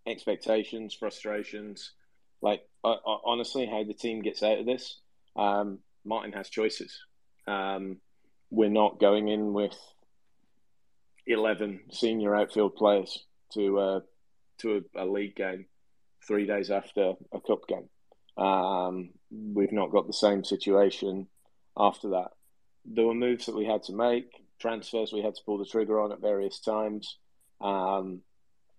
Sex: male